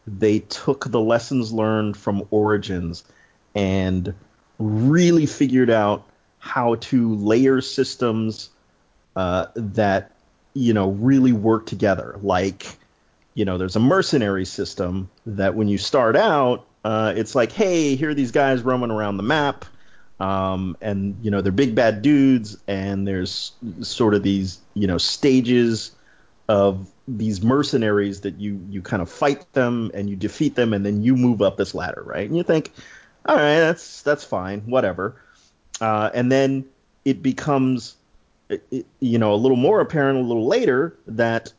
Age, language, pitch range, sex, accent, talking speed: 30-49, English, 100-130 Hz, male, American, 155 wpm